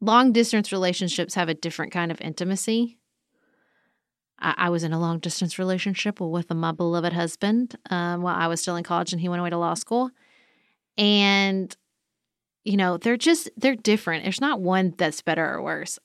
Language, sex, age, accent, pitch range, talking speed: English, female, 30-49, American, 170-210 Hz, 185 wpm